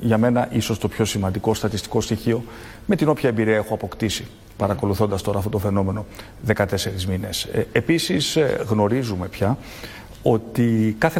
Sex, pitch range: male, 105-135 Hz